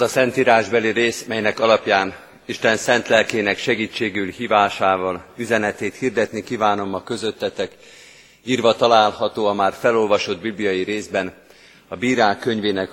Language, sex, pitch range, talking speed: Hungarian, male, 100-120 Hz, 115 wpm